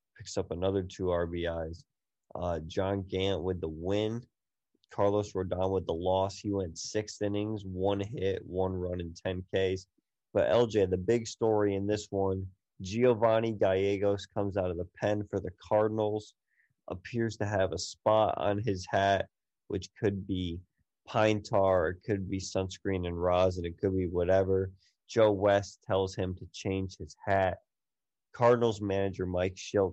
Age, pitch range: 20-39, 95-105 Hz